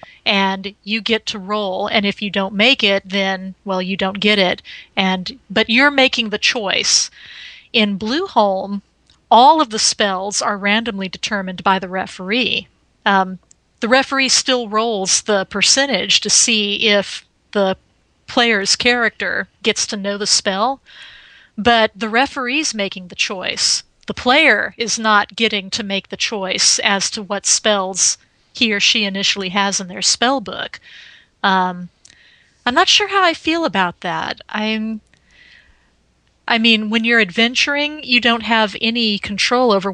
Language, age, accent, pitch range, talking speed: English, 40-59, American, 195-235 Hz, 155 wpm